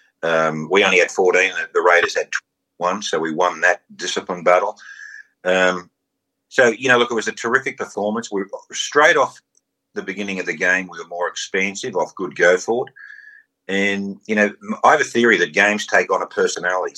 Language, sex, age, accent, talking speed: English, male, 50-69, Australian, 200 wpm